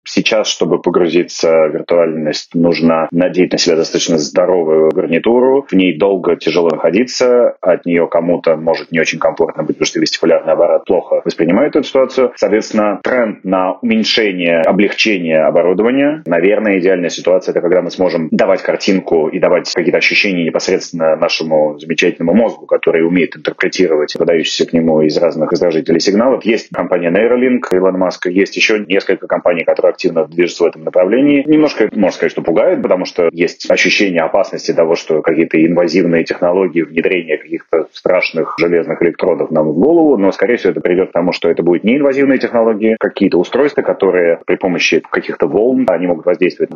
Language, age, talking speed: Russian, 30-49, 165 wpm